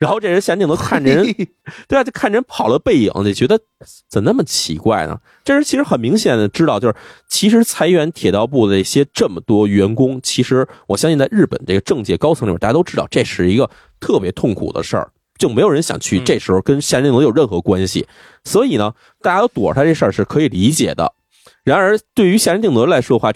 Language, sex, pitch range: Chinese, male, 100-155 Hz